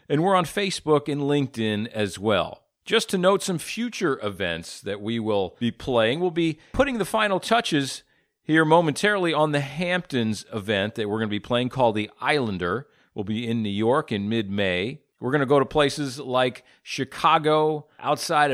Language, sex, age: English, male, 40-59